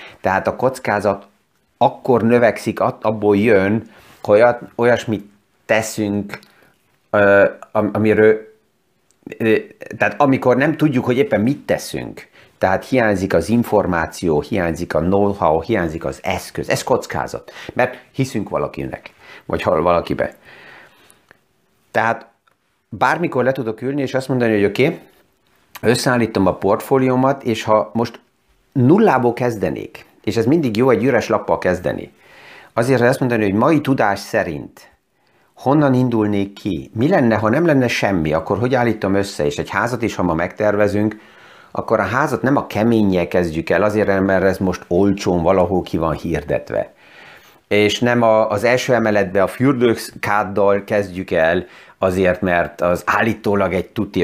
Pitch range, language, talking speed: 100-125 Hz, Hungarian, 135 wpm